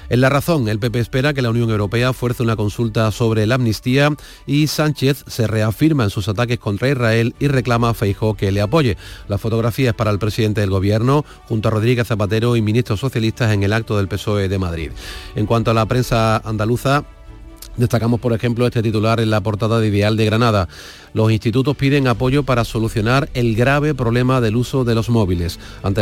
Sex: male